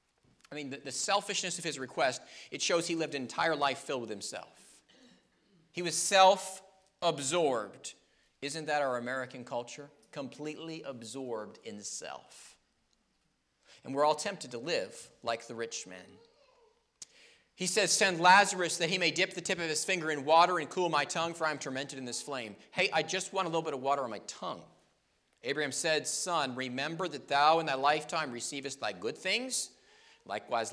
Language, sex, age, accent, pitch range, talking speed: English, male, 40-59, American, 140-180 Hz, 180 wpm